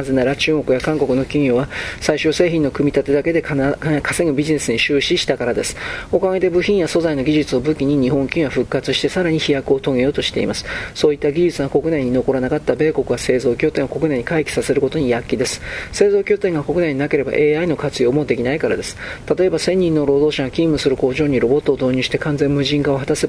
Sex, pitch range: male, 135-160 Hz